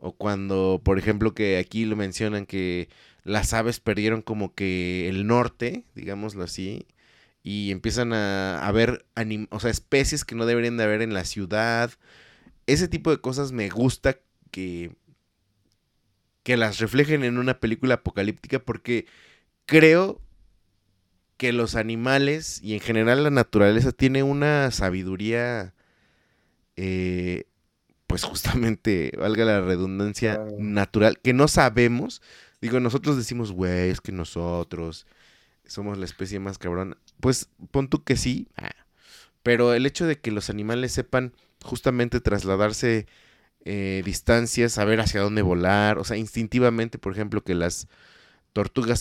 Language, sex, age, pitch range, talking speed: Spanish, male, 20-39, 95-120 Hz, 135 wpm